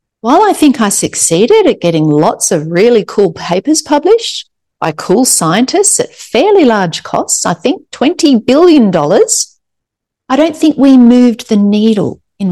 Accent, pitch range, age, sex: Australian, 185-260 Hz, 40-59, female